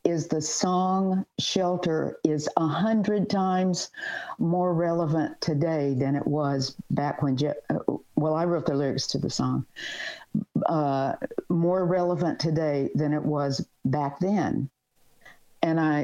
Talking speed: 125 wpm